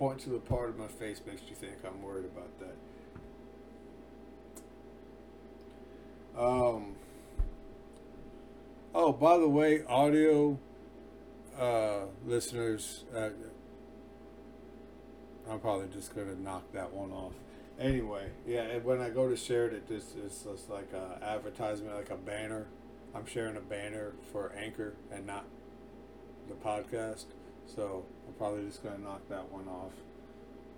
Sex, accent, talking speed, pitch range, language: male, American, 130 wpm, 105-130 Hz, English